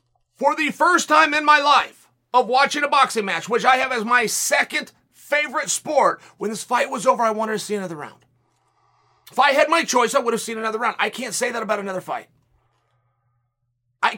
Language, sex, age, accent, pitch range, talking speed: English, male, 30-49, American, 205-290 Hz, 210 wpm